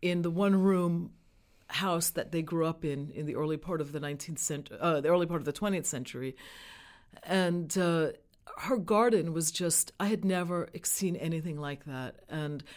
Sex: female